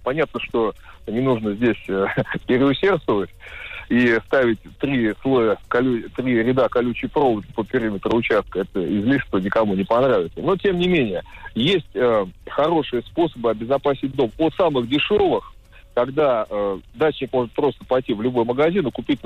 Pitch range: 115-150 Hz